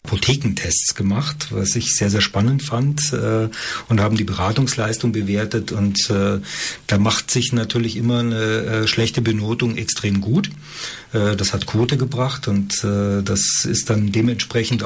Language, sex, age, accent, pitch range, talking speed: German, male, 40-59, German, 110-135 Hz, 155 wpm